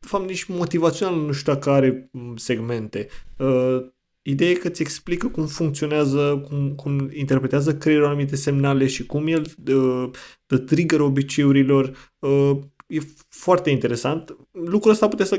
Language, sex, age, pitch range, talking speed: Romanian, male, 20-39, 130-155 Hz, 135 wpm